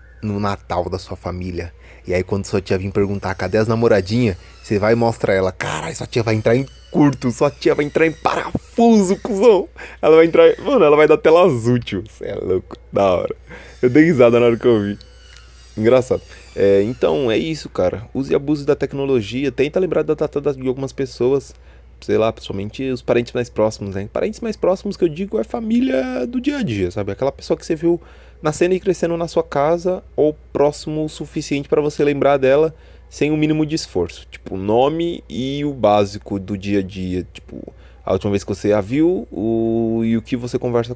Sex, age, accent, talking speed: male, 20-39, Brazilian, 205 wpm